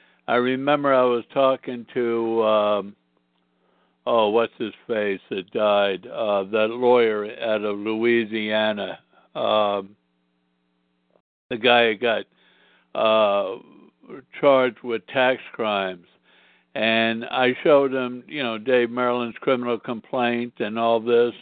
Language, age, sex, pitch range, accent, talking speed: English, 60-79, male, 105-125 Hz, American, 120 wpm